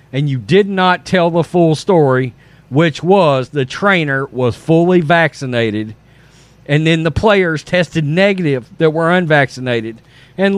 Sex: male